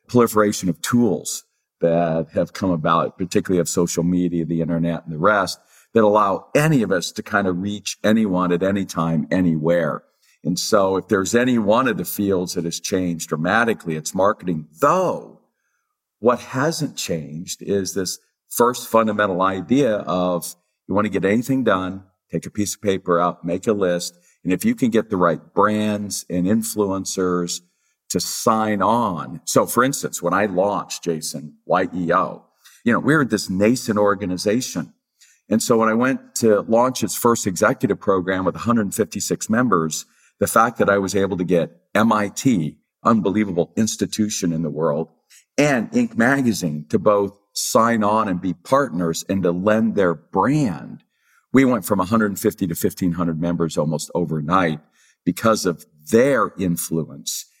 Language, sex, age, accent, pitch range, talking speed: English, male, 50-69, American, 85-110 Hz, 160 wpm